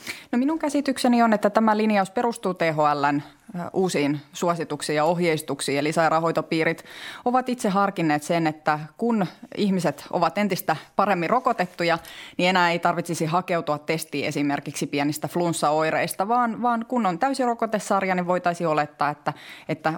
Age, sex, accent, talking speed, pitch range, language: 20-39, female, native, 135 wpm, 155-195 Hz, Finnish